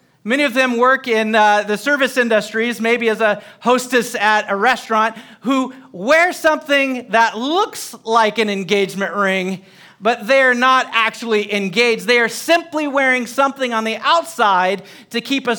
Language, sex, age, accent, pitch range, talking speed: English, male, 40-59, American, 200-265 Hz, 160 wpm